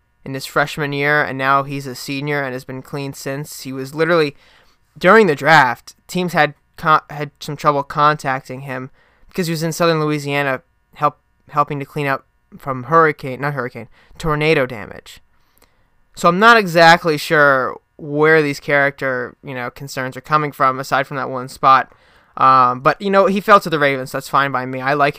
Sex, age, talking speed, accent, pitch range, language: male, 20-39, 190 wpm, American, 130-160 Hz, English